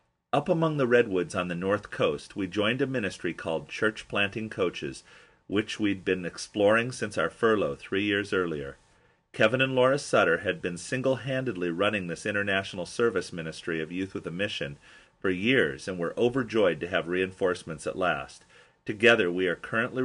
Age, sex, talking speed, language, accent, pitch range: 40-59, male, 175 wpm, English, American, 90-115 Hz